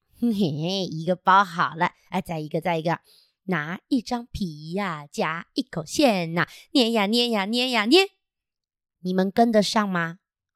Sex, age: female, 20-39